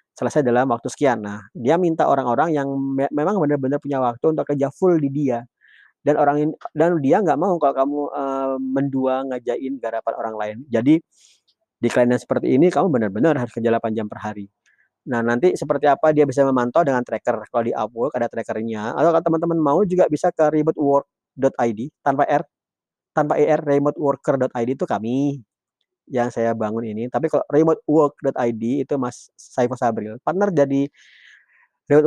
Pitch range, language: 125-170 Hz, Indonesian